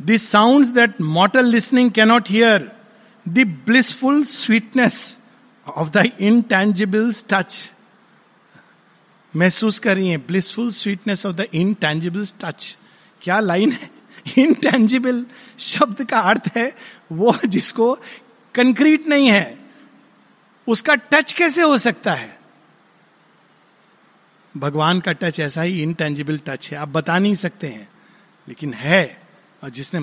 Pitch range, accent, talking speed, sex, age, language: 190-250 Hz, native, 120 wpm, male, 60-79, Hindi